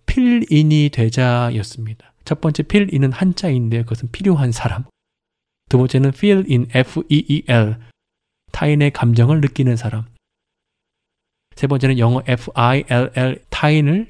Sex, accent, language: male, native, Korean